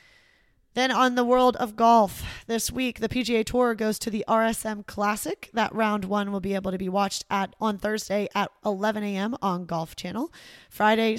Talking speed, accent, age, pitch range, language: 190 wpm, American, 20-39, 175-220 Hz, English